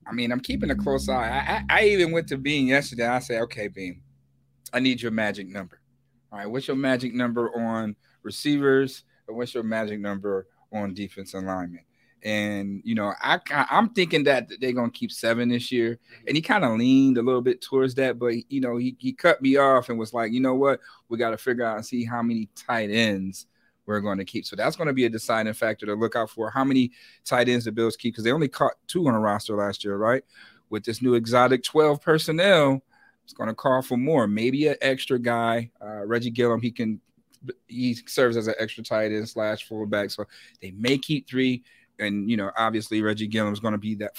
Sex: male